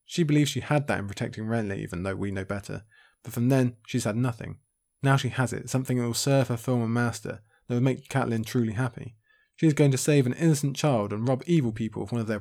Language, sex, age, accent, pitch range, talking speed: English, male, 20-39, British, 110-135 Hz, 250 wpm